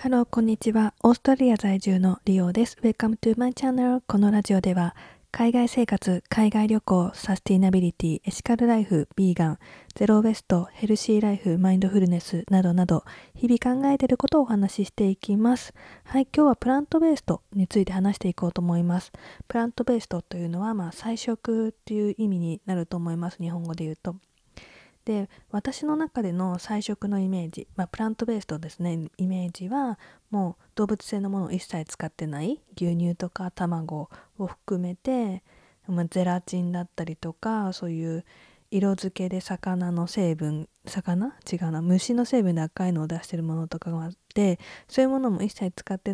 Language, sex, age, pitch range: Japanese, female, 20-39, 175-225 Hz